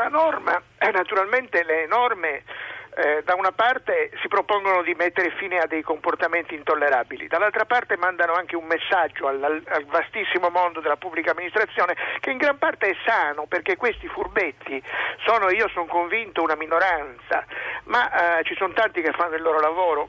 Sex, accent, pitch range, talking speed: male, native, 165-205 Hz, 165 wpm